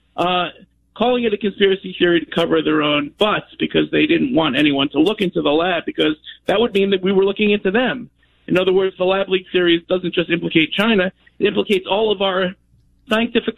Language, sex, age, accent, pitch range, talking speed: English, male, 50-69, American, 175-220 Hz, 210 wpm